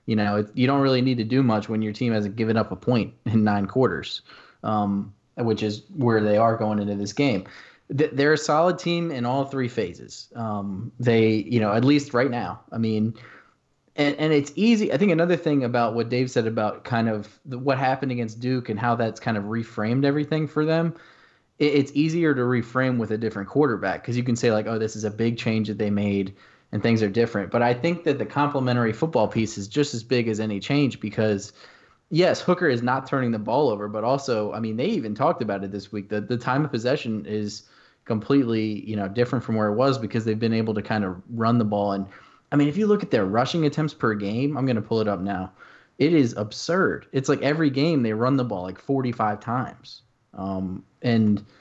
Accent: American